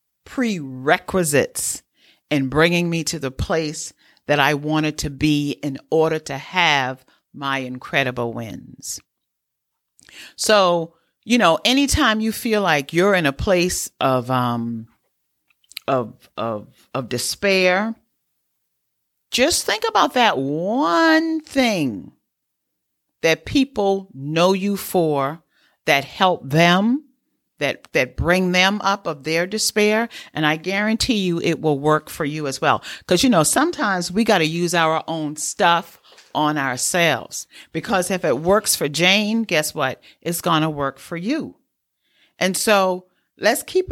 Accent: American